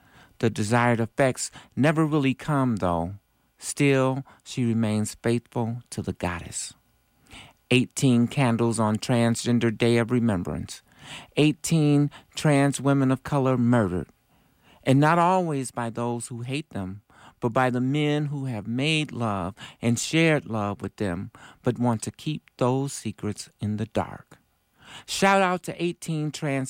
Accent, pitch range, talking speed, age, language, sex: American, 120-170 Hz, 140 wpm, 50-69, English, male